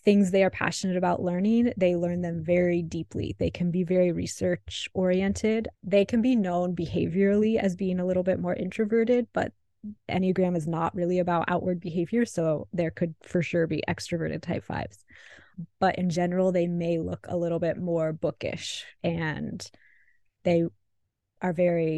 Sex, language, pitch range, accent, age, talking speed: female, English, 170-195 Hz, American, 20-39, 165 wpm